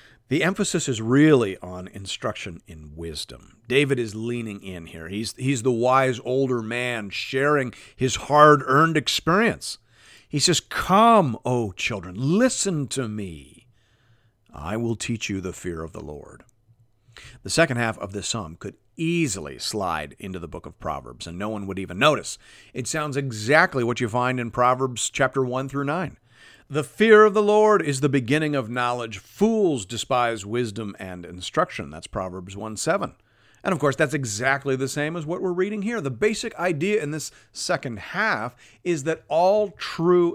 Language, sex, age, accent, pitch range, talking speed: English, male, 50-69, American, 110-150 Hz, 170 wpm